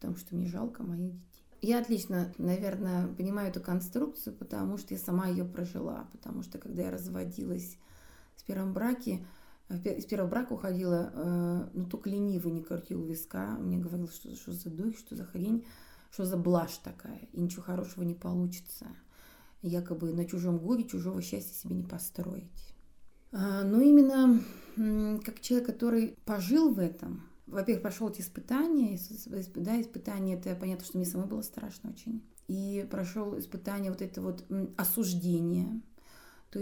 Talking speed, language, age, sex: 155 wpm, Russian, 30-49, female